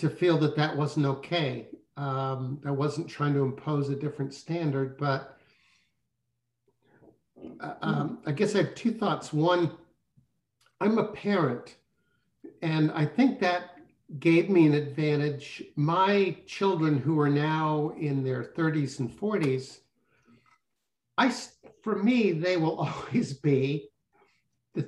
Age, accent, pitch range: 60-79, American, 145-175 Hz